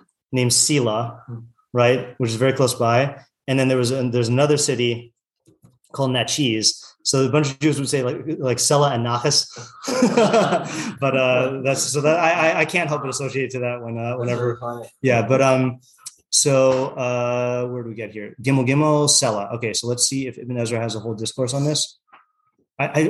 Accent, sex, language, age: American, male, English, 30-49